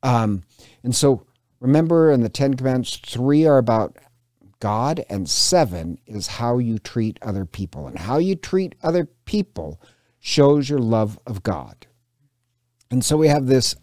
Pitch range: 100-130 Hz